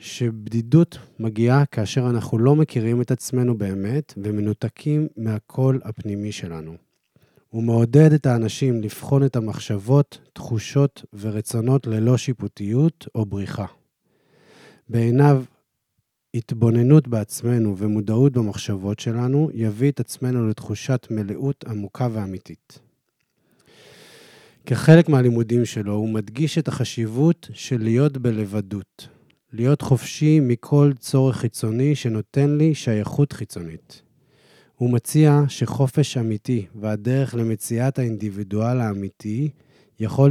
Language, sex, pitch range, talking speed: Hebrew, male, 110-140 Hz, 100 wpm